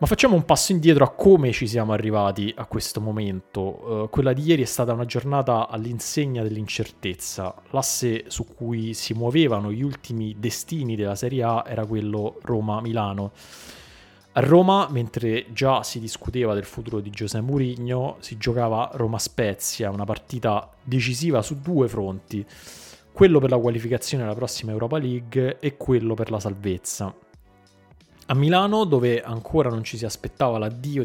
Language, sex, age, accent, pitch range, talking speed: Italian, male, 20-39, native, 105-130 Hz, 155 wpm